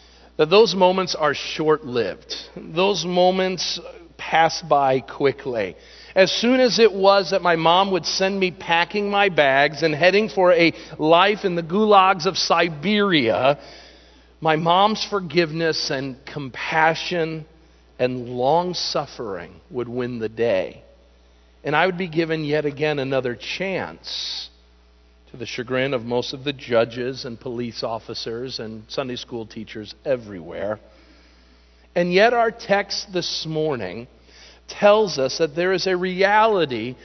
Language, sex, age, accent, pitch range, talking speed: English, male, 50-69, American, 125-190 Hz, 135 wpm